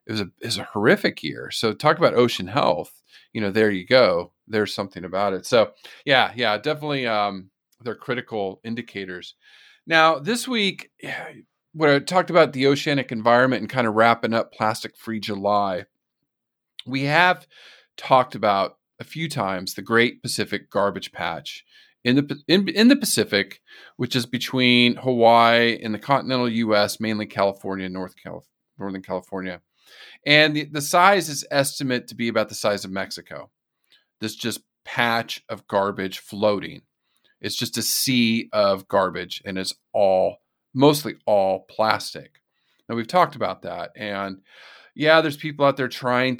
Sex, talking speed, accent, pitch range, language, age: male, 160 wpm, American, 105-135 Hz, English, 40-59